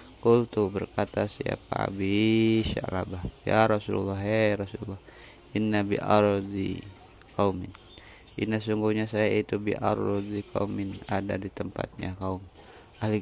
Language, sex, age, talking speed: Indonesian, male, 30-49, 100 wpm